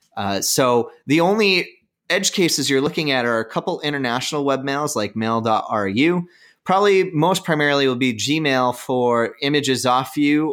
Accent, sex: American, male